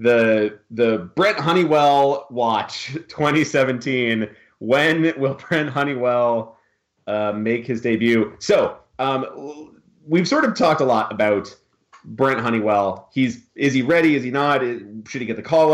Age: 30-49